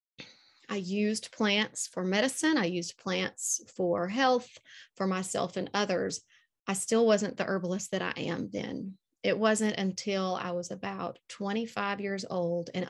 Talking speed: 155 wpm